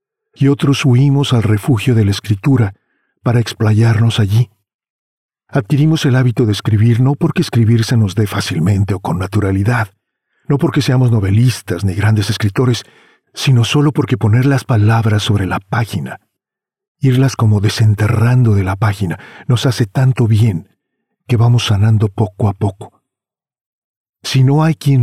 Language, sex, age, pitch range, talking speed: Spanish, male, 50-69, 105-135 Hz, 145 wpm